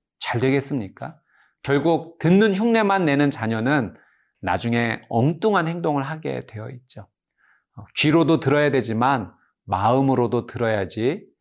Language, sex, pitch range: Korean, male, 110-155 Hz